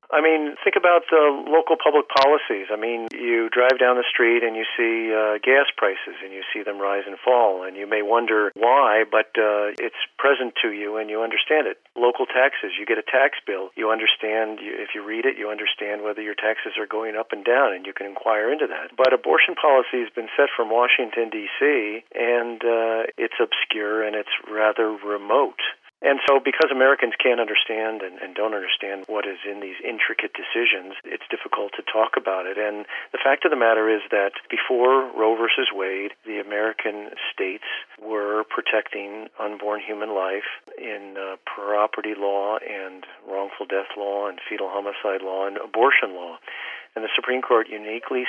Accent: American